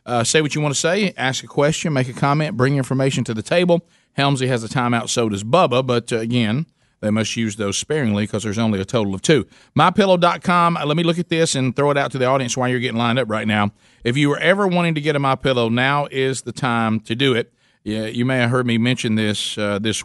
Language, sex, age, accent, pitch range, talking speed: English, male, 40-59, American, 115-145 Hz, 255 wpm